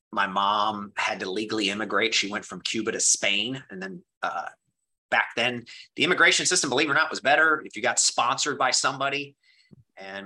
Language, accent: English, American